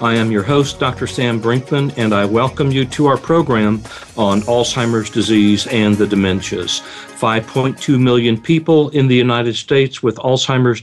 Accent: American